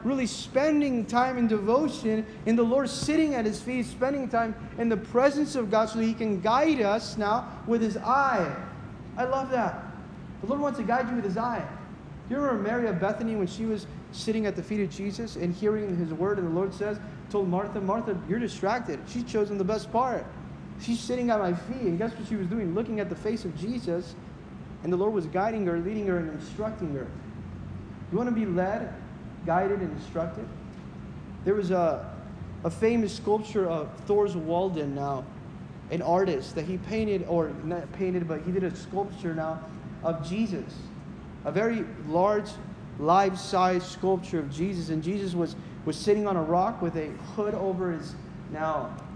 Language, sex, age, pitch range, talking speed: English, male, 30-49, 175-220 Hz, 190 wpm